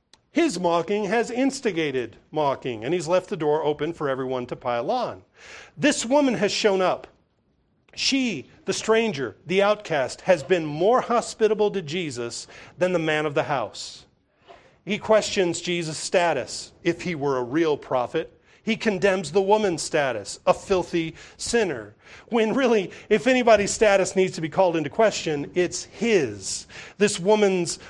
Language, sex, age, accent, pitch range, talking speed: English, male, 40-59, American, 170-235 Hz, 155 wpm